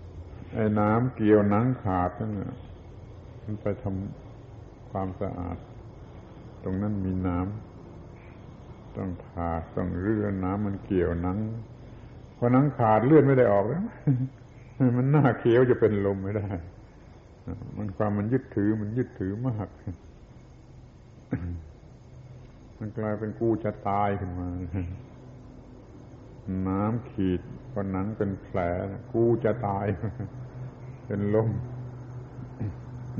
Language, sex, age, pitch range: Thai, male, 70-89, 100-125 Hz